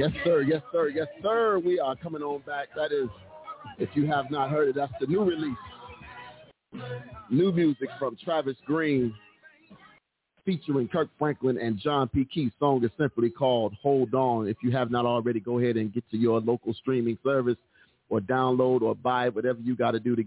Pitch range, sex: 110-130 Hz, male